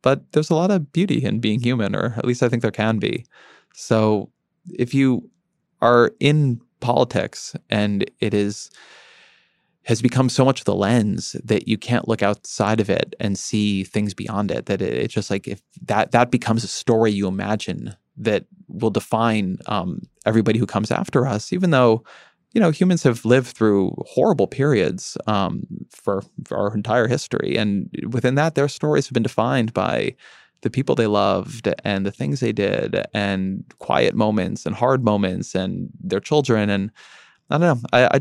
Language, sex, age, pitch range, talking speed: English, male, 20-39, 105-130 Hz, 180 wpm